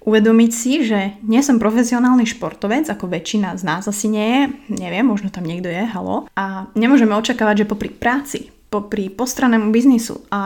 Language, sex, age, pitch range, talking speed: Slovak, female, 20-39, 200-230 Hz, 170 wpm